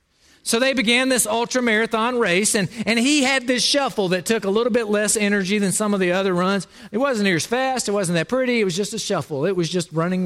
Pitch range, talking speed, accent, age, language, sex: 140-205 Hz, 250 wpm, American, 40-59, English, male